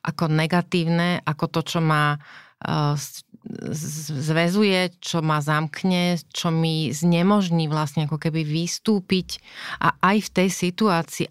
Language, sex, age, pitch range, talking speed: Slovak, female, 30-49, 150-180 Hz, 115 wpm